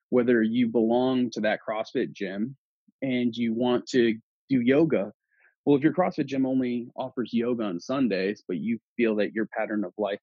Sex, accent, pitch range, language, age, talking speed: male, American, 115-145 Hz, English, 30-49, 180 wpm